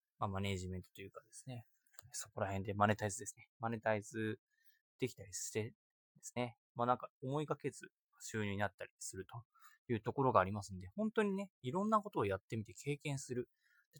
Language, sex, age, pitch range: Japanese, male, 20-39, 110-170 Hz